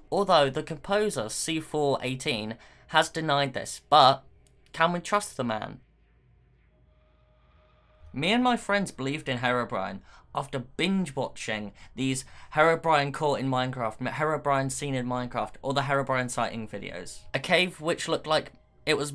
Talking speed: 140 wpm